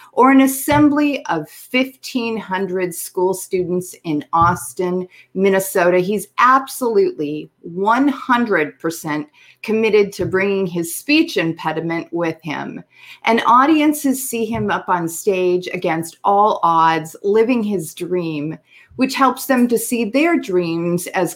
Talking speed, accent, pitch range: 120 wpm, American, 170-230 Hz